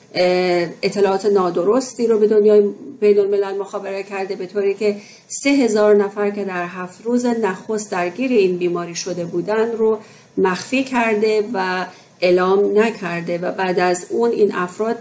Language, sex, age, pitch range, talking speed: Persian, female, 40-59, 180-210 Hz, 150 wpm